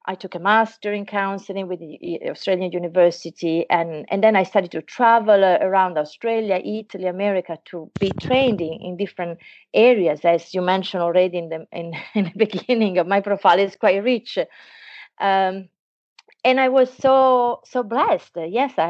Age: 30-49